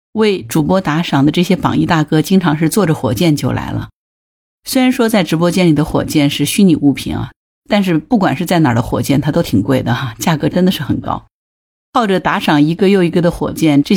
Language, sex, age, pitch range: Chinese, female, 50-69, 145-195 Hz